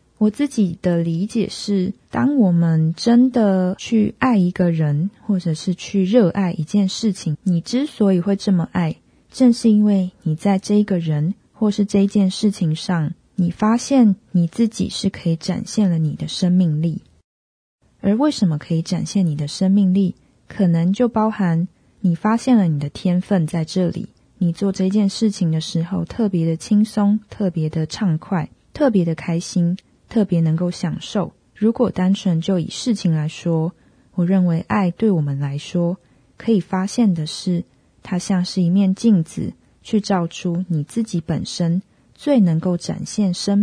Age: 20-39